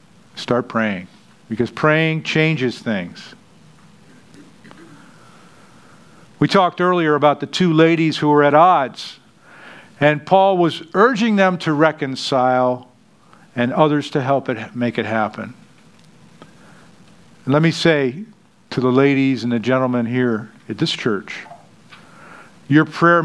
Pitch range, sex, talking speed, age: 125-160 Hz, male, 120 wpm, 50-69